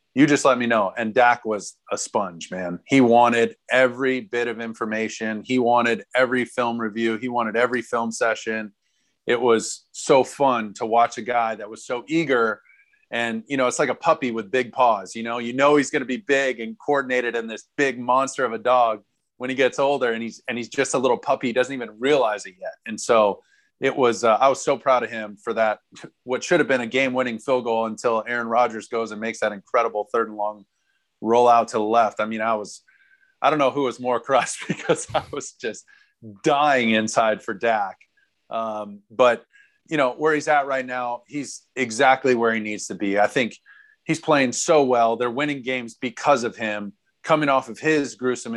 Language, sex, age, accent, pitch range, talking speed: English, male, 30-49, American, 115-135 Hz, 215 wpm